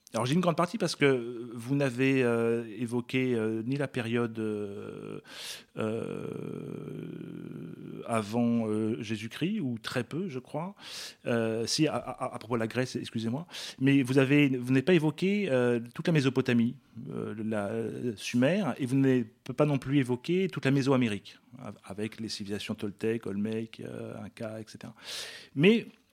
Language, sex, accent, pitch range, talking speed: French, male, French, 115-155 Hz, 155 wpm